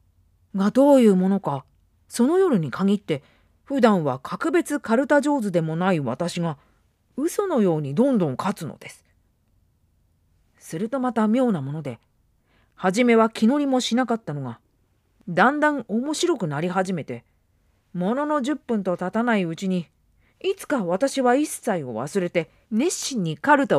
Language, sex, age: Japanese, female, 40-59